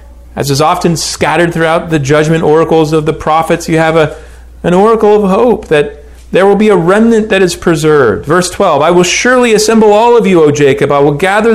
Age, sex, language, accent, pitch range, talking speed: 40-59, male, English, American, 110-190 Hz, 215 wpm